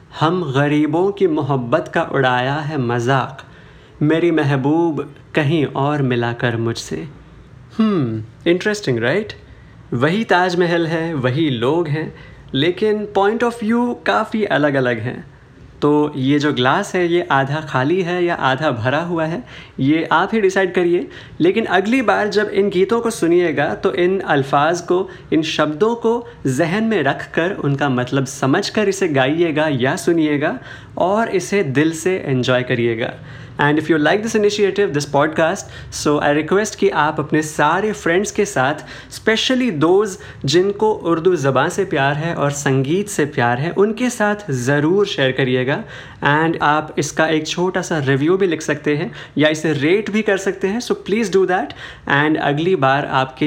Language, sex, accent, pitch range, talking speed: Hindi, male, native, 135-185 Hz, 160 wpm